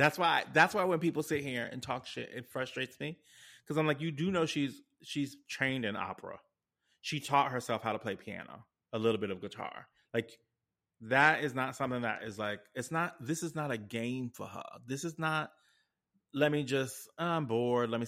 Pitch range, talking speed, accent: 110-150 Hz, 210 wpm, American